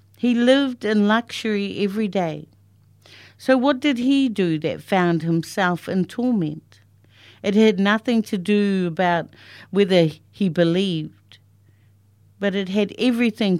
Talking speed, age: 130 wpm, 60-79